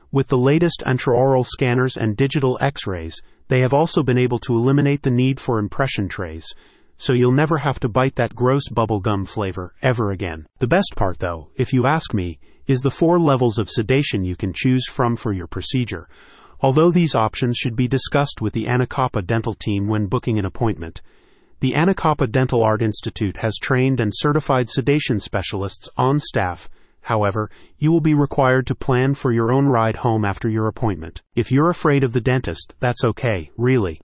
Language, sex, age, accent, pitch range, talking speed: English, male, 30-49, American, 105-135 Hz, 185 wpm